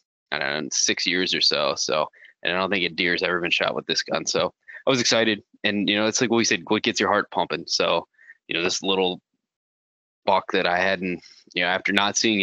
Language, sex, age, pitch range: English, male, 20-39, 95-110 Hz